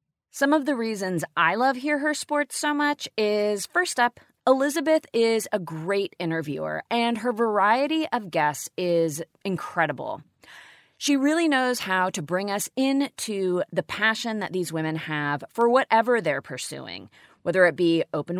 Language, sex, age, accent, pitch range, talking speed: English, female, 30-49, American, 170-270 Hz, 155 wpm